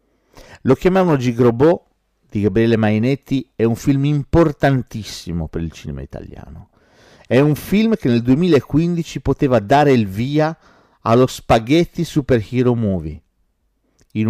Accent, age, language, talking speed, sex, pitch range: native, 50-69, Italian, 120 wpm, male, 105-145 Hz